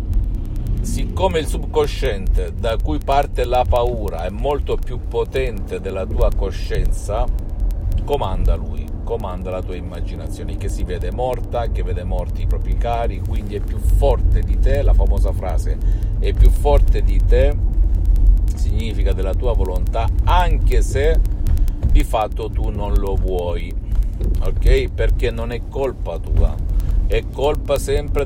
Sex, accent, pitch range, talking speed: male, native, 85-110 Hz, 140 wpm